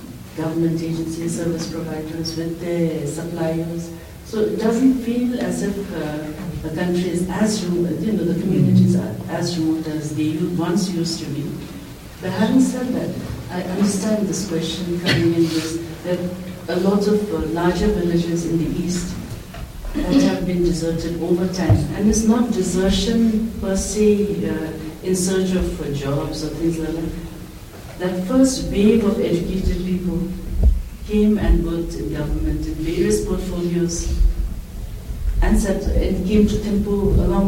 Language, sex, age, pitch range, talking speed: English, female, 60-79, 155-185 Hz, 155 wpm